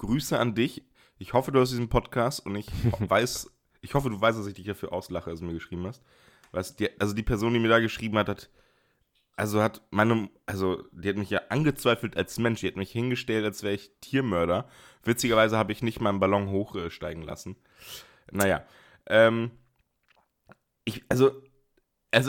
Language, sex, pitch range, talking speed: German, male, 105-125 Hz, 180 wpm